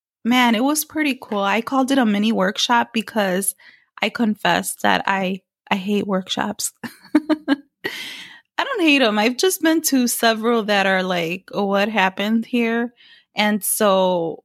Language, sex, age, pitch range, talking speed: English, female, 20-39, 205-245 Hz, 155 wpm